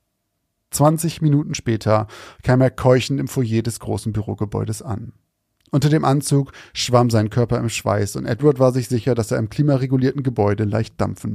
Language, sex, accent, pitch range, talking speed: German, male, German, 110-135 Hz, 170 wpm